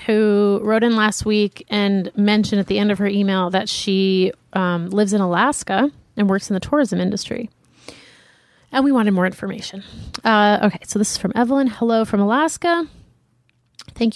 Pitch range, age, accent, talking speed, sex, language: 195-250 Hz, 30-49, American, 175 wpm, female, English